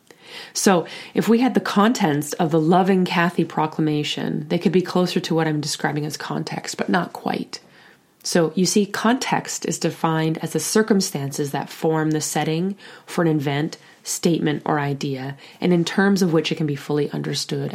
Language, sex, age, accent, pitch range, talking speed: English, female, 30-49, American, 155-185 Hz, 180 wpm